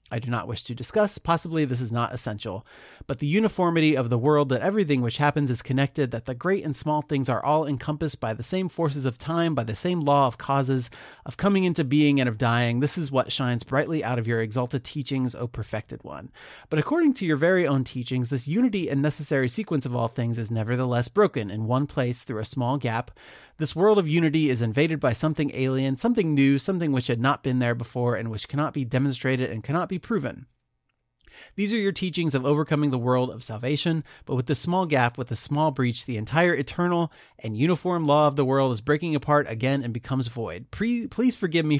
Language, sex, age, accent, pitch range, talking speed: English, male, 30-49, American, 125-155 Hz, 225 wpm